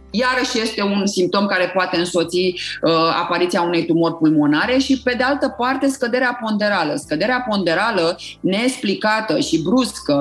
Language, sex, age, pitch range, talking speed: Romanian, female, 30-49, 175-245 Hz, 140 wpm